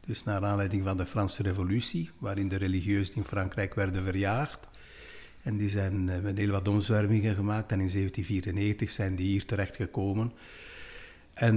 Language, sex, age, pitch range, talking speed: Dutch, male, 60-79, 95-110 Hz, 160 wpm